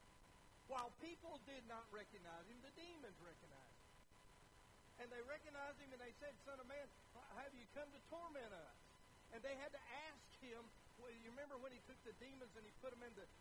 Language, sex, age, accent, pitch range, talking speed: English, male, 60-79, American, 220-275 Hz, 205 wpm